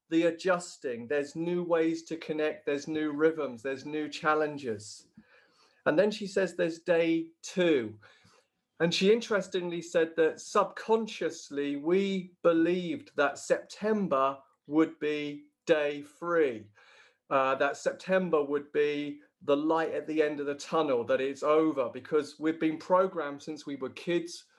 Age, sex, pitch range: 40-59, male, 145-175 Hz